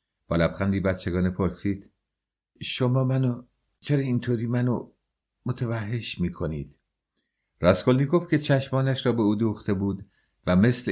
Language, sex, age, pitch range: English, male, 50-69, 85-110 Hz